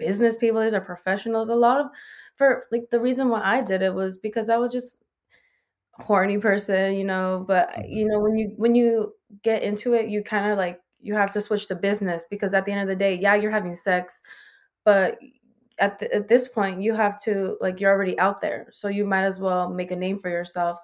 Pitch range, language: 190-230 Hz, English